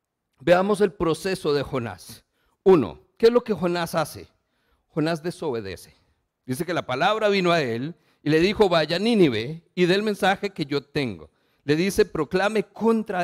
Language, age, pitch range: Spanish, 50-69, 155-210 Hz